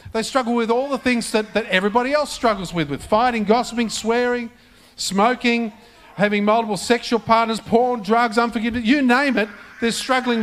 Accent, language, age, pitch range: Australian, English, 50-69, 185-235 Hz